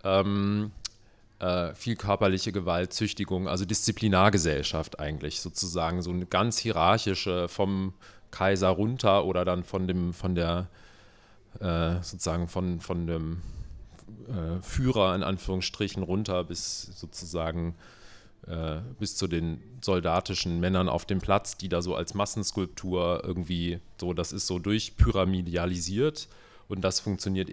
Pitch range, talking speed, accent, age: 85-100 Hz, 125 wpm, German, 40-59